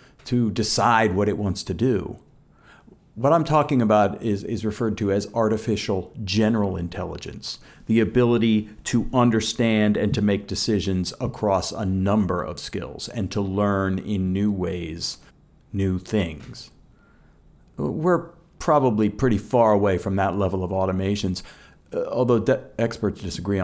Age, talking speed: 50-69, 135 wpm